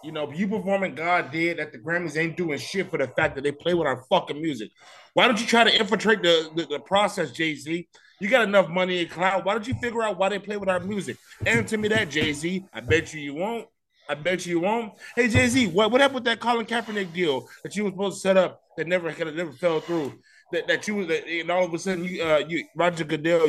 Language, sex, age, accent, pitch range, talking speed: English, male, 20-39, American, 150-195 Hz, 265 wpm